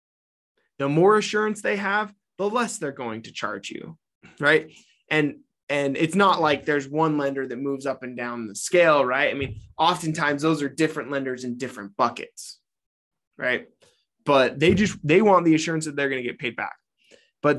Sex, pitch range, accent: male, 140-170 Hz, American